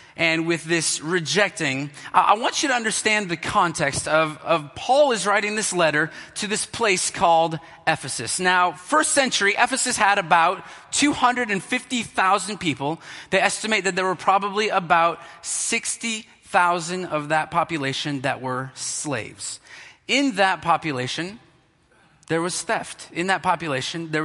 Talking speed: 135 wpm